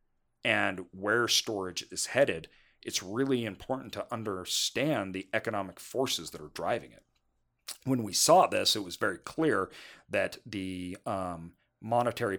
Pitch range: 90-110 Hz